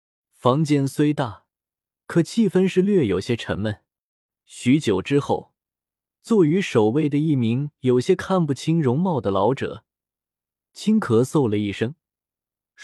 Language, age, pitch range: Chinese, 20-39, 105-155 Hz